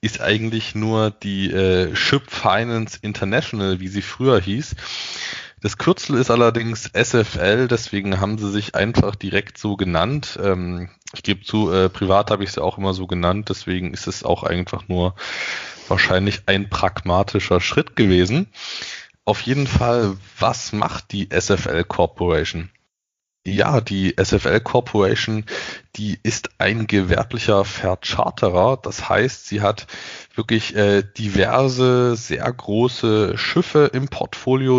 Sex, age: male, 20-39